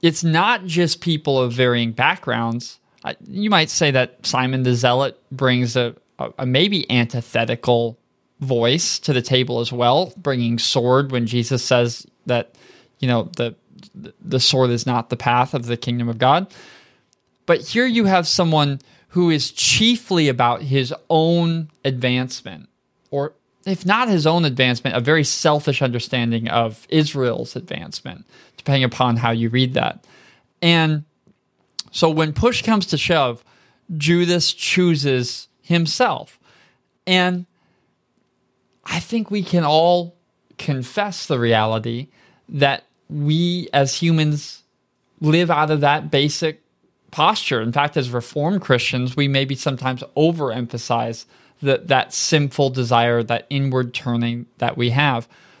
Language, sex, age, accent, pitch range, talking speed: English, male, 20-39, American, 125-165 Hz, 135 wpm